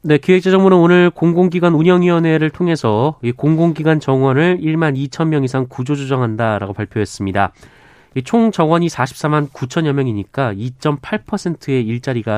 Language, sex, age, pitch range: Korean, male, 30-49, 120-165 Hz